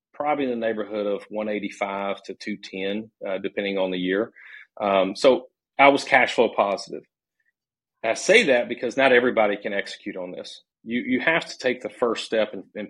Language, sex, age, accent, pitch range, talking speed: English, male, 40-59, American, 100-120 Hz, 185 wpm